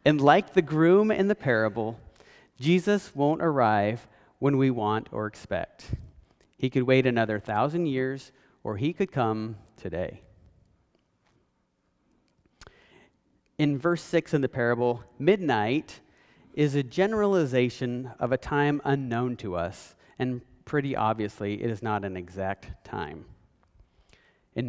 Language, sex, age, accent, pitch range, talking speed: English, male, 40-59, American, 105-145 Hz, 125 wpm